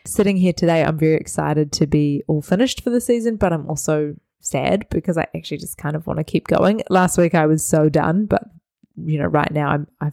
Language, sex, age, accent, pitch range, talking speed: English, female, 20-39, Australian, 150-175 Hz, 235 wpm